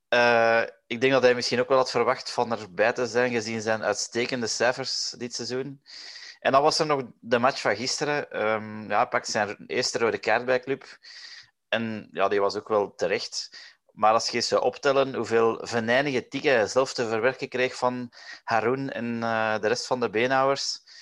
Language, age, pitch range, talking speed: Dutch, 20-39, 110-125 Hz, 195 wpm